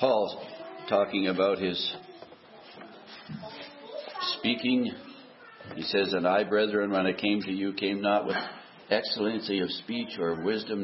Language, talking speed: English, 125 wpm